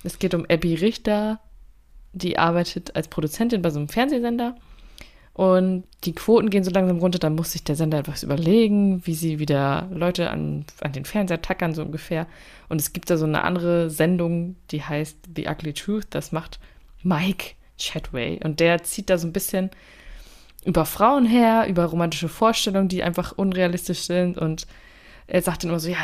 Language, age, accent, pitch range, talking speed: German, 20-39, German, 160-190 Hz, 180 wpm